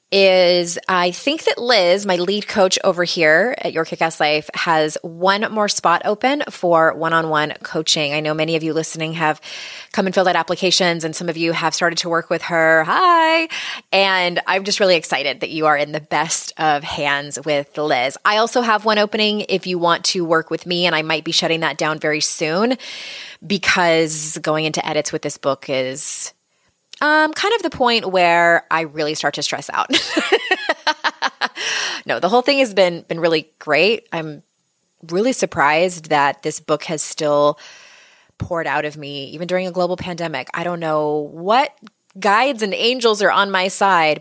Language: English